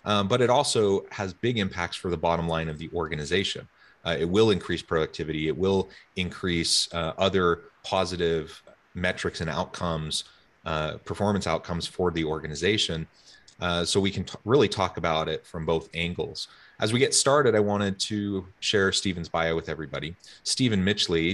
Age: 30-49